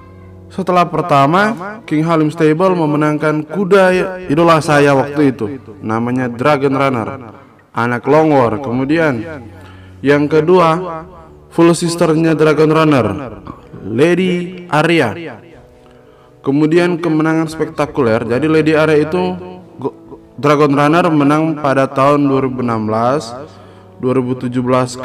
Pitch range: 115-160 Hz